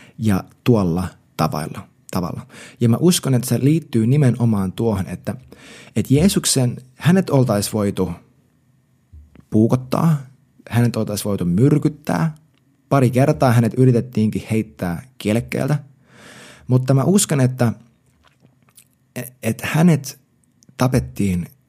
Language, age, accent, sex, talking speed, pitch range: Finnish, 20-39, native, male, 100 wpm, 100-135 Hz